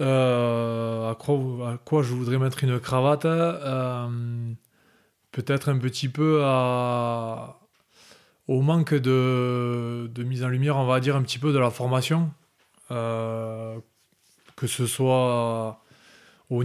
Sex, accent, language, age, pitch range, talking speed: male, French, French, 20-39, 120-145 Hz, 135 wpm